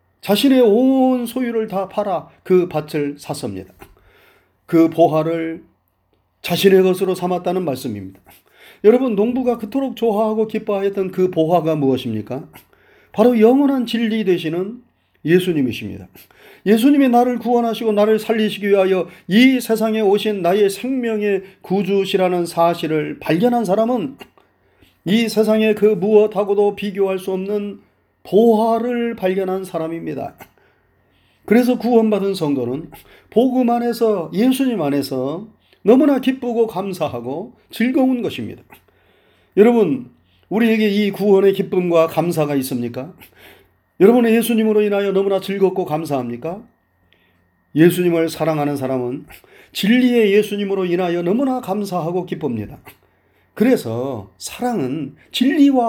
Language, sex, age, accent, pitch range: Korean, male, 40-59, native, 150-225 Hz